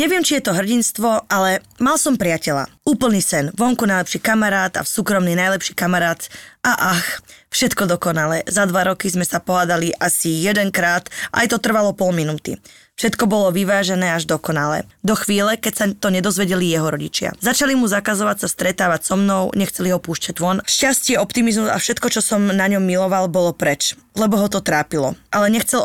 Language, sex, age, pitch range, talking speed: Slovak, female, 20-39, 180-220 Hz, 180 wpm